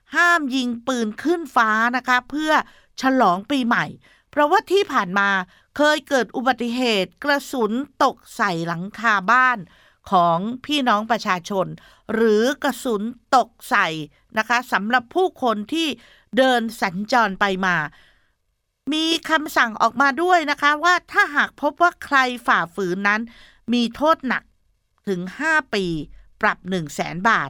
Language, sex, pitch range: Thai, female, 200-275 Hz